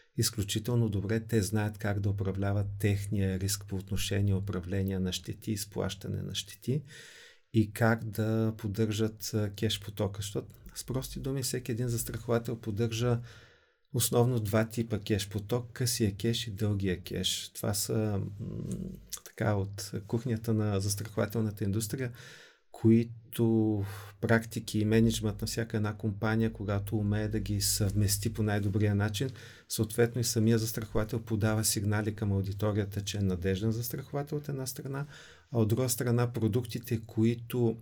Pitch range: 105-120 Hz